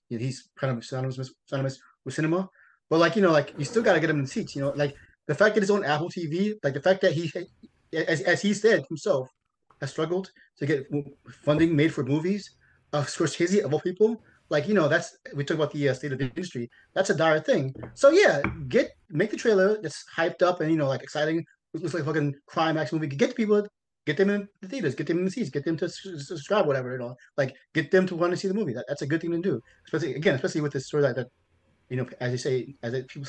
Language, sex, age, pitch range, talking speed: English, male, 30-49, 130-170 Hz, 260 wpm